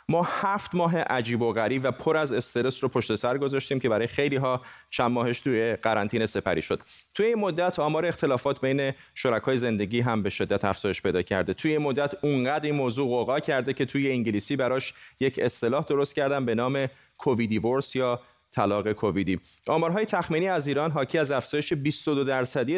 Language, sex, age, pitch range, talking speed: Persian, male, 30-49, 115-150 Hz, 180 wpm